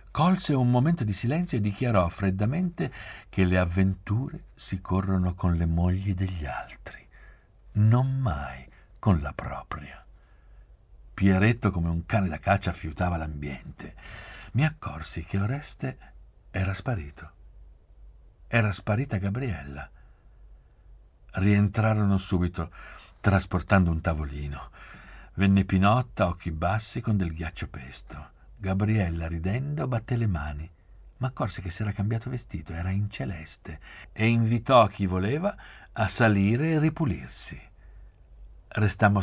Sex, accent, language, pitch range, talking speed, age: male, native, Italian, 85-110 Hz, 120 wpm, 60-79